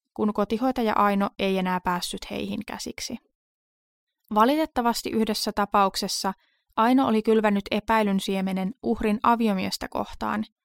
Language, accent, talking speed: Finnish, native, 105 wpm